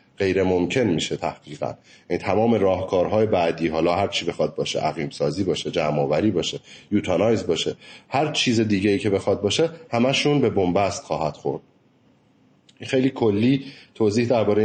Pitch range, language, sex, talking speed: 95-120 Hz, Persian, male, 150 wpm